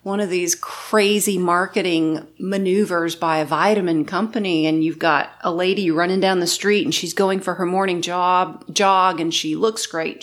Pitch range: 180-225 Hz